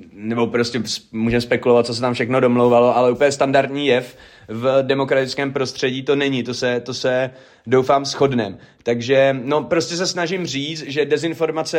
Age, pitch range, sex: 30-49, 130-155 Hz, male